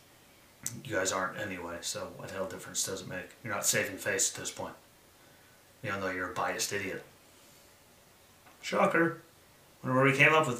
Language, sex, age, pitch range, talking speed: English, male, 30-49, 115-145 Hz, 180 wpm